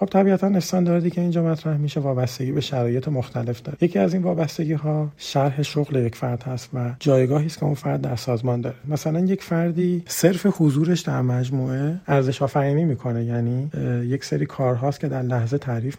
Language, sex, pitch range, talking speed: English, male, 130-160 Hz, 180 wpm